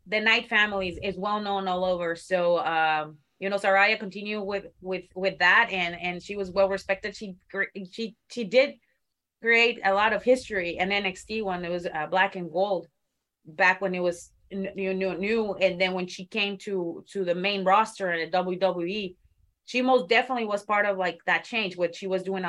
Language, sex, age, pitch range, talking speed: English, female, 30-49, 170-210 Hz, 195 wpm